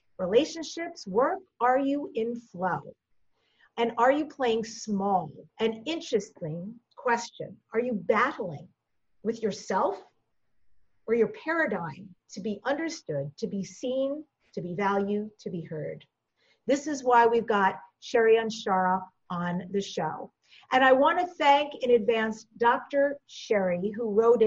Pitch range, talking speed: 200-270 Hz, 135 wpm